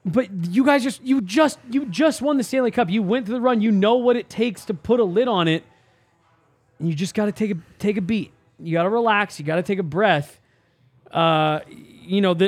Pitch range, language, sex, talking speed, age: 185-240 Hz, English, male, 250 wpm, 20-39